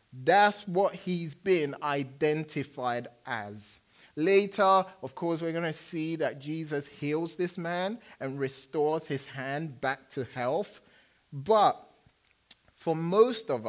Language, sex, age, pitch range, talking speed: English, male, 30-49, 135-175 Hz, 125 wpm